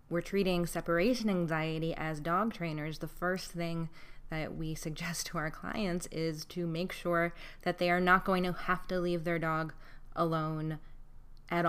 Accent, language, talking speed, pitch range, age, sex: American, English, 170 wpm, 155-175 Hz, 20-39, female